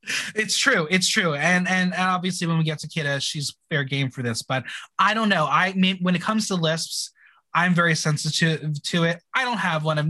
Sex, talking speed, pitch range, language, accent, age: male, 240 wpm, 150-190 Hz, English, American, 20-39